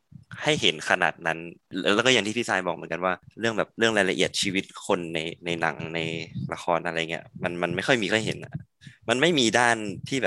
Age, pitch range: 20-39, 85-110 Hz